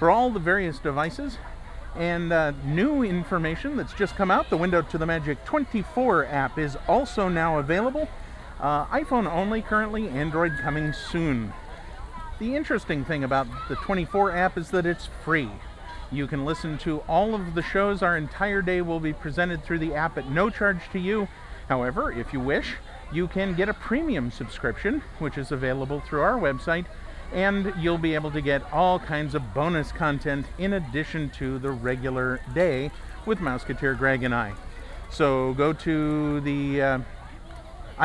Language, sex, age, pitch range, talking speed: English, male, 50-69, 140-190 Hz, 170 wpm